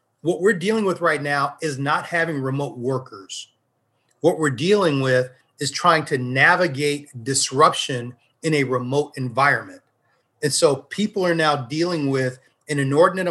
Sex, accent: male, American